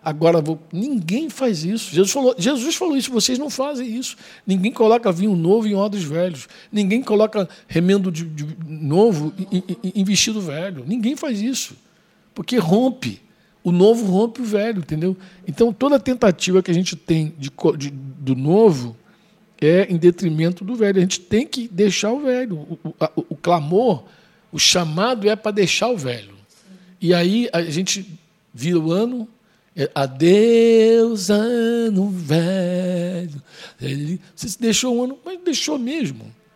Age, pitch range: 60-79, 155-215 Hz